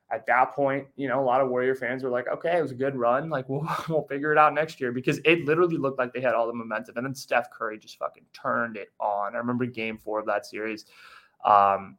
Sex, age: male, 20-39